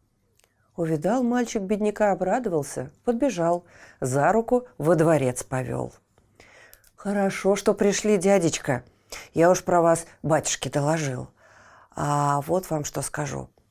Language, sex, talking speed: Russian, female, 110 wpm